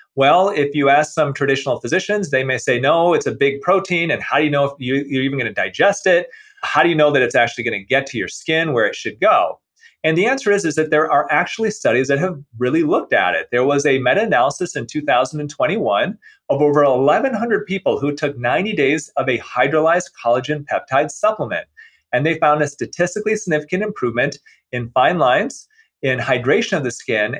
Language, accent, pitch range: English, American, 140-195 Hz